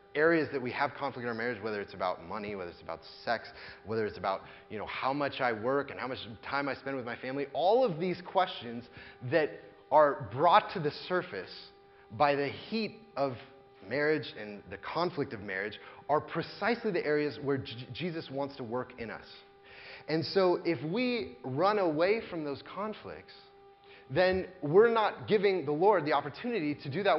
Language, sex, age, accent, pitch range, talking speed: English, male, 30-49, American, 130-195 Hz, 190 wpm